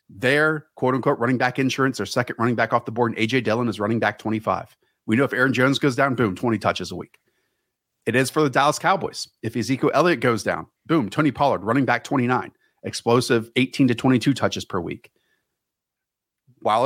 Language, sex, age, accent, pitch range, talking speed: English, male, 30-49, American, 125-165 Hz, 200 wpm